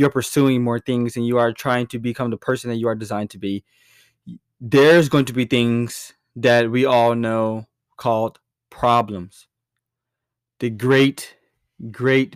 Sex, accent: male, American